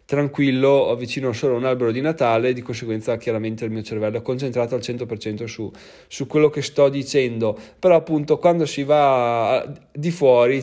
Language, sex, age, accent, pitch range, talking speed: Italian, male, 20-39, native, 115-160 Hz, 175 wpm